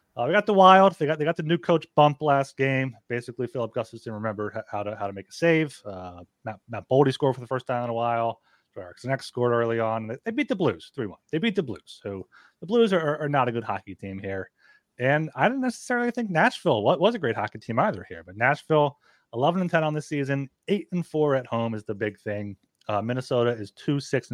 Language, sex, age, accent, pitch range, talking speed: English, male, 30-49, American, 105-140 Hz, 245 wpm